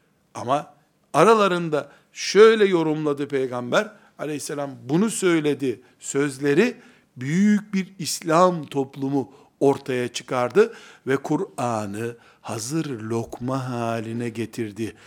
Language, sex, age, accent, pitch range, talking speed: Turkish, male, 60-79, native, 110-150 Hz, 85 wpm